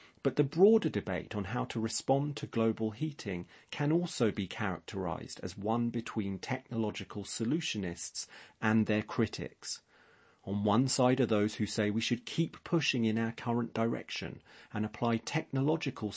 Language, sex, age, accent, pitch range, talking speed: English, male, 30-49, British, 100-120 Hz, 150 wpm